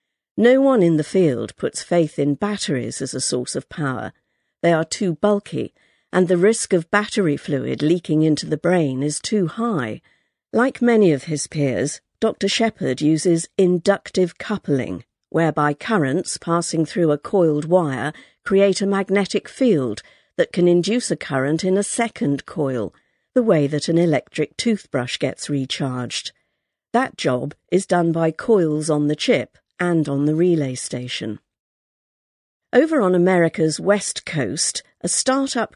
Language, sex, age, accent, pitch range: Chinese, female, 50-69, British, 145-200 Hz